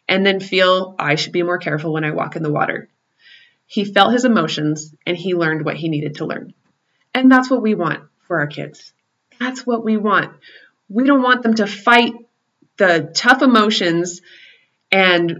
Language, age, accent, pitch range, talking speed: English, 20-39, American, 175-230 Hz, 185 wpm